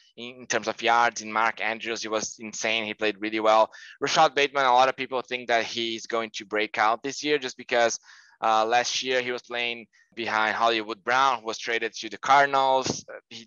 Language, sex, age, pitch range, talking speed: English, male, 20-39, 110-130 Hz, 210 wpm